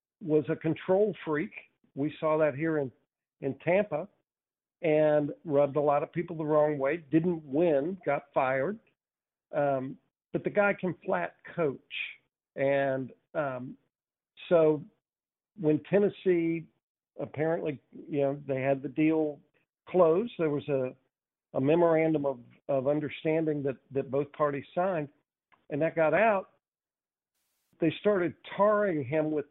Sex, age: male, 50-69